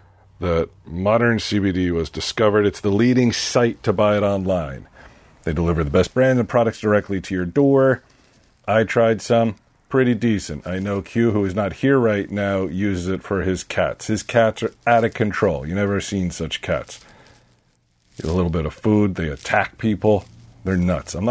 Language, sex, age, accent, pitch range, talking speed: English, male, 40-59, American, 90-115 Hz, 185 wpm